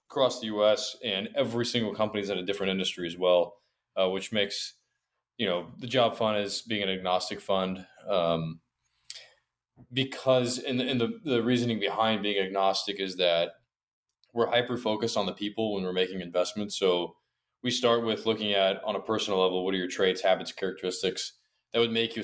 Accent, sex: American, male